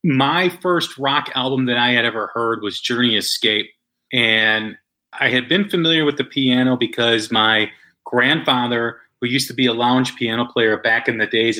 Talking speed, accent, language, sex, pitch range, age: 180 wpm, American, English, male, 115-140 Hz, 30-49